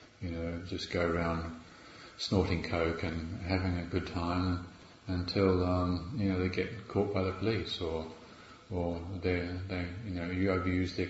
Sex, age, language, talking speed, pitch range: male, 40-59, English, 170 wpm, 90-115 Hz